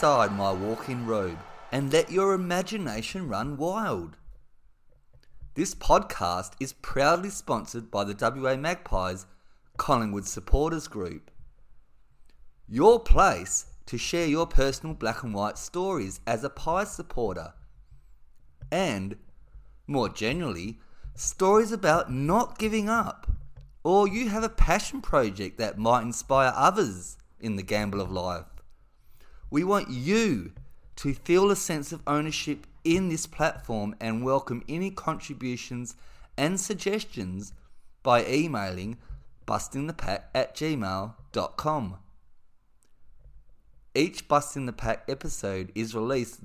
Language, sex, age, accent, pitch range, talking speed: English, male, 30-49, Australian, 100-160 Hz, 110 wpm